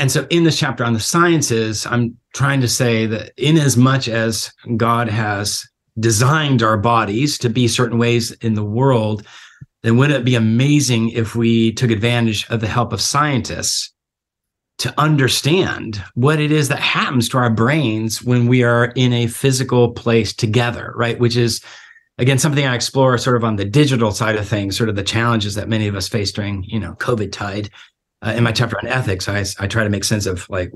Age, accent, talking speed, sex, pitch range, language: 40-59, American, 205 wpm, male, 110-130 Hz, English